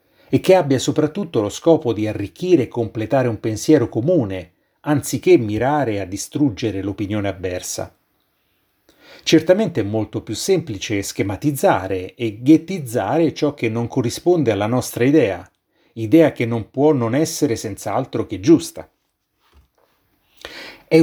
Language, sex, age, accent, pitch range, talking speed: Italian, male, 30-49, native, 110-150 Hz, 125 wpm